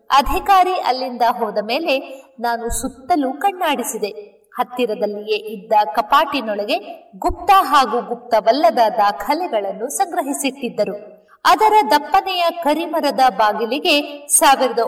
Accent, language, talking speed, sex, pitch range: native, Kannada, 80 wpm, female, 220-315 Hz